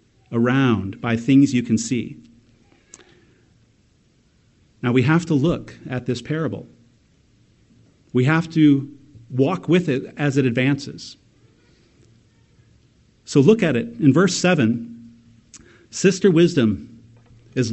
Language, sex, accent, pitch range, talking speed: English, male, American, 115-180 Hz, 110 wpm